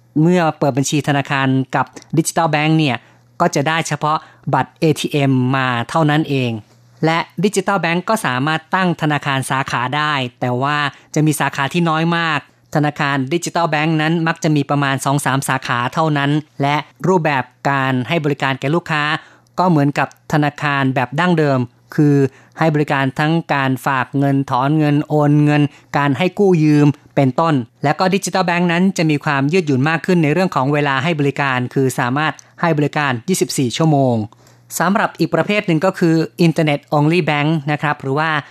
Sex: female